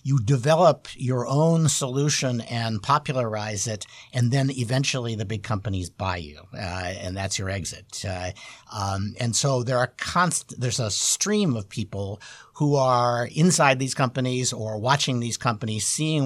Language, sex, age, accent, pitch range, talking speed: English, male, 50-69, American, 105-130 Hz, 160 wpm